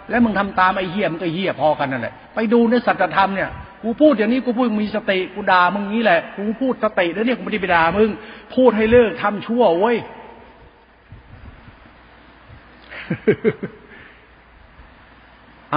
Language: Thai